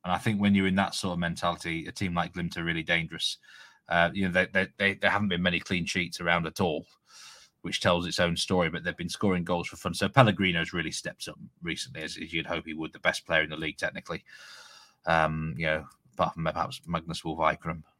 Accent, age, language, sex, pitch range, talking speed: British, 30-49, English, male, 90-115 Hz, 235 wpm